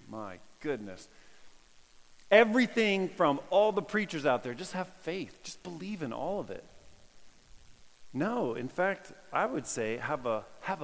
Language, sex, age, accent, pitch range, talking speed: English, male, 40-59, American, 130-190 Hz, 150 wpm